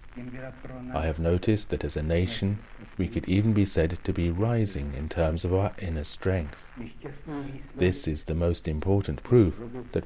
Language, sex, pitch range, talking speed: English, male, 80-110 Hz, 165 wpm